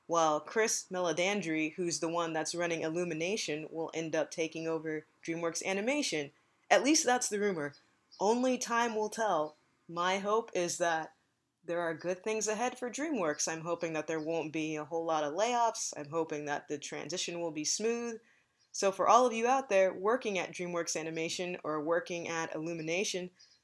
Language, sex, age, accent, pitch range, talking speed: English, female, 20-39, American, 165-215 Hz, 180 wpm